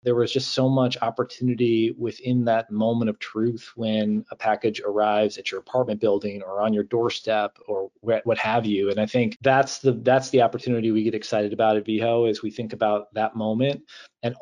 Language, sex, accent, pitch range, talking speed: English, male, American, 105-125 Hz, 200 wpm